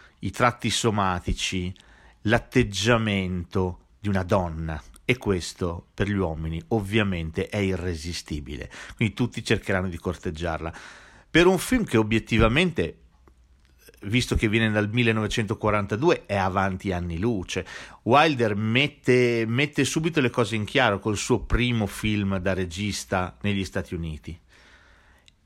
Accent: native